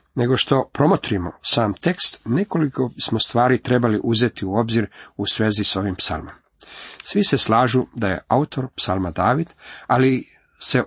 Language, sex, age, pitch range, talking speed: Croatian, male, 50-69, 110-145 Hz, 150 wpm